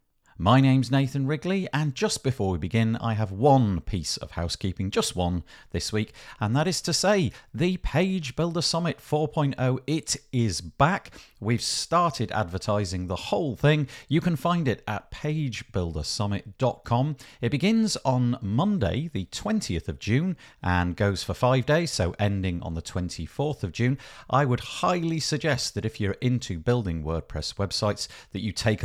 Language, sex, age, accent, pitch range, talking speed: English, male, 50-69, British, 100-145 Hz, 160 wpm